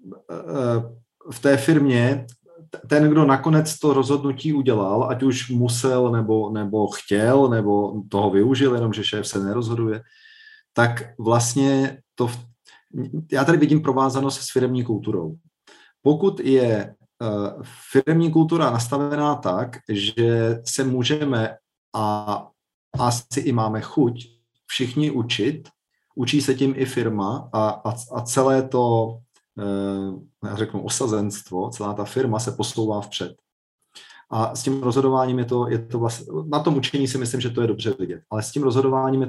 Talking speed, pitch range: 135 wpm, 110-140 Hz